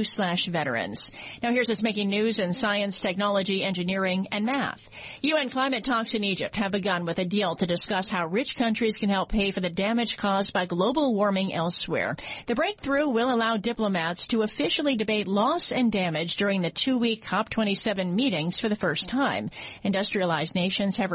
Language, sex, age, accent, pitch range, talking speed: English, female, 40-59, American, 190-250 Hz, 175 wpm